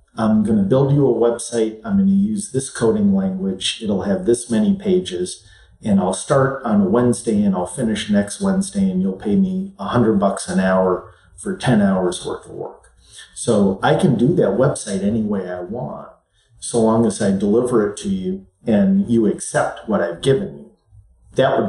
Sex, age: male, 40-59